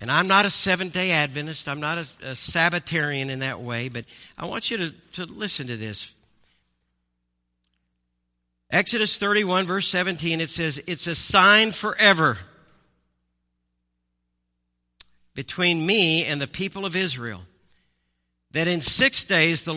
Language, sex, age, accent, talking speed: English, male, 50-69, American, 135 wpm